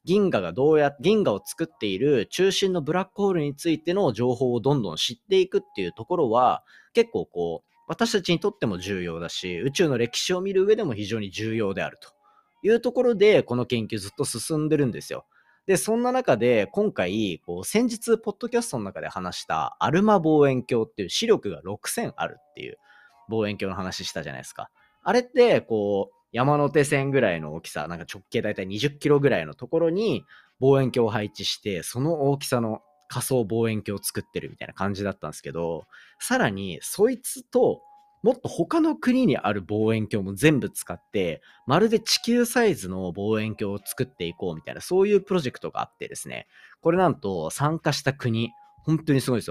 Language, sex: Japanese, male